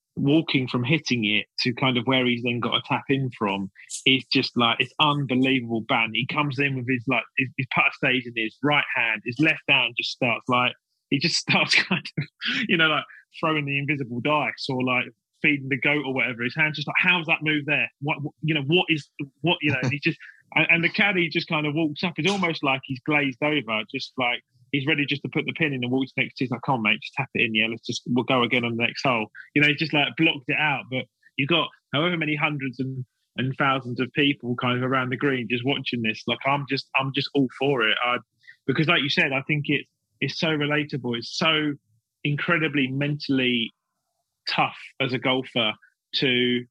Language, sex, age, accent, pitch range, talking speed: English, male, 30-49, British, 125-150 Hz, 235 wpm